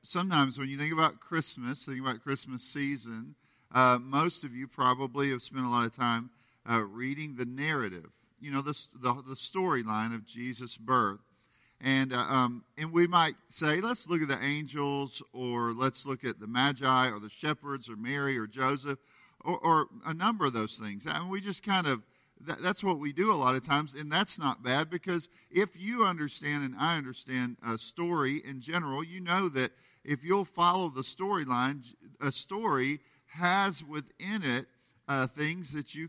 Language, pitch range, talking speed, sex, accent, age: English, 125-160 Hz, 190 wpm, male, American, 50-69